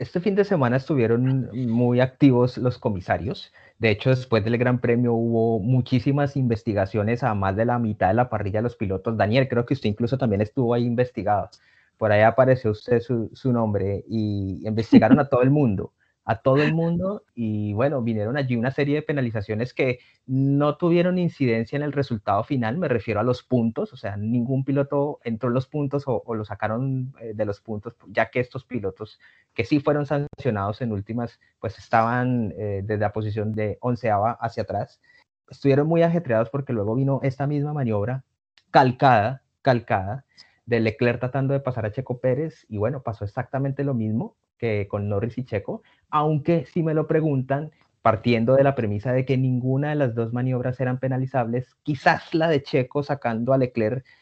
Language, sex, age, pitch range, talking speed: Spanish, male, 30-49, 110-135 Hz, 185 wpm